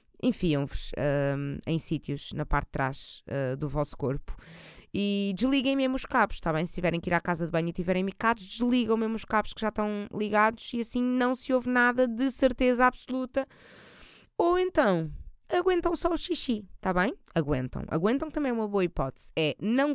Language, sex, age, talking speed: Portuguese, female, 20-39, 195 wpm